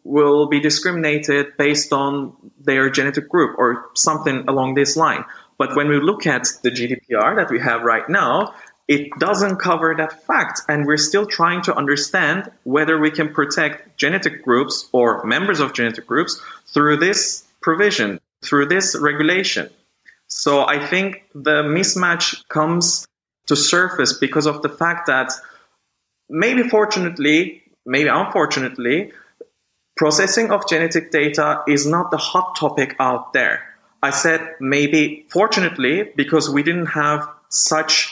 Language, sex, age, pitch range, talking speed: English, male, 20-39, 140-165 Hz, 140 wpm